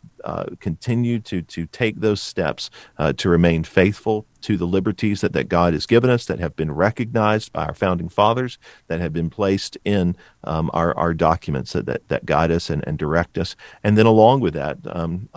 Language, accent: English, American